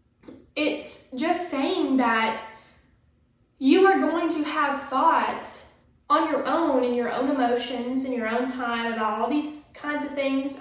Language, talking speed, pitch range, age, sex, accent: English, 155 wpm, 235-270 Hz, 10-29, female, American